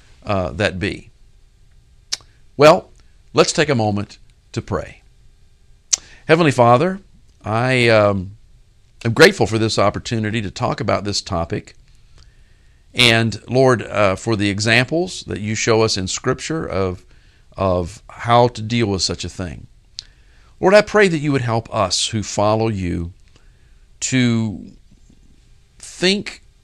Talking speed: 130 wpm